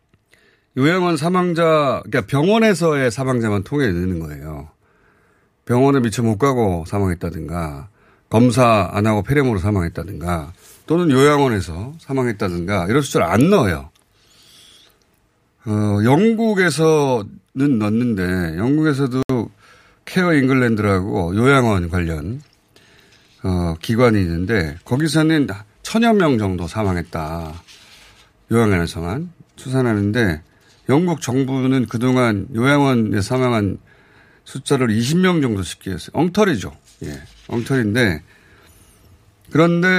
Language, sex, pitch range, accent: Korean, male, 100-145 Hz, native